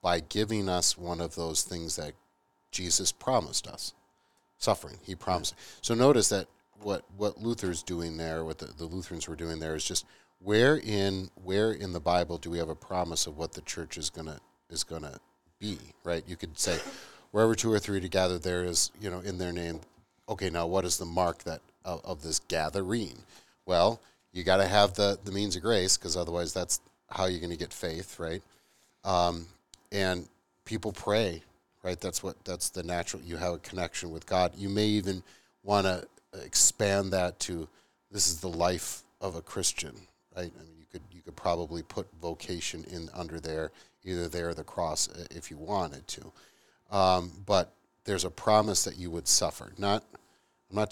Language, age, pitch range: English, 40-59, 85-95 Hz